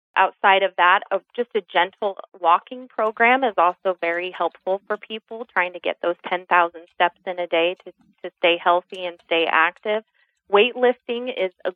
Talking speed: 170 wpm